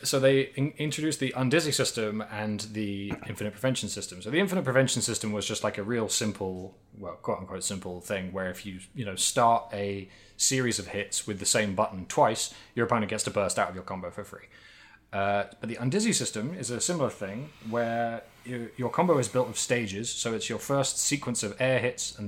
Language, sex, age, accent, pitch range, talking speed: English, male, 20-39, British, 100-130 Hz, 210 wpm